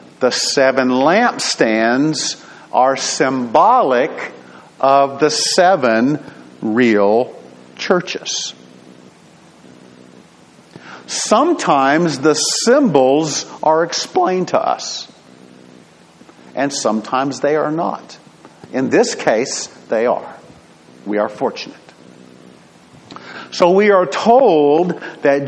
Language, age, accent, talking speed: English, 50-69, American, 80 wpm